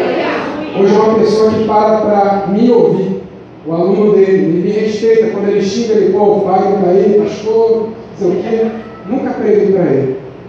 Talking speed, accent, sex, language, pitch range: 185 wpm, Brazilian, male, Portuguese, 180-230 Hz